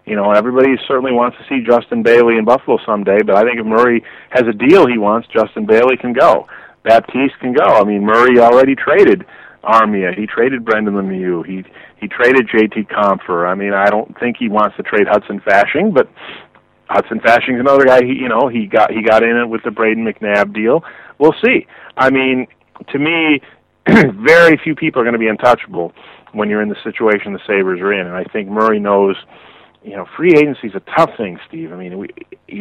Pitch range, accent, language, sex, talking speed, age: 105-125 Hz, American, English, male, 210 wpm, 40-59